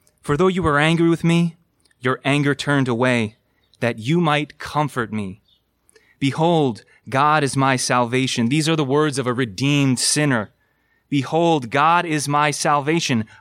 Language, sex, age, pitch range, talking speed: English, male, 30-49, 135-185 Hz, 150 wpm